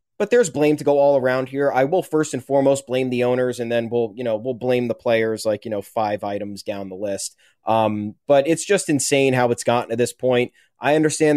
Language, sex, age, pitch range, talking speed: English, male, 20-39, 125-155 Hz, 245 wpm